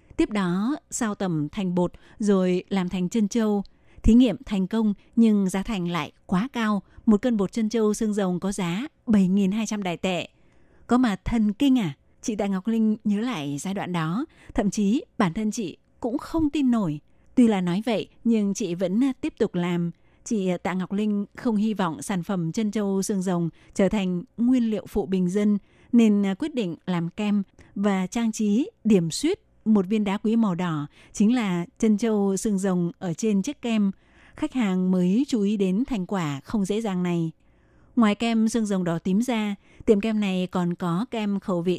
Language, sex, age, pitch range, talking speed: Vietnamese, female, 20-39, 185-220 Hz, 200 wpm